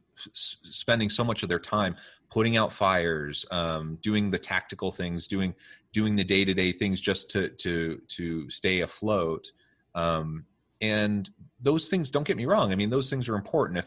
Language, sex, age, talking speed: English, male, 30-49, 175 wpm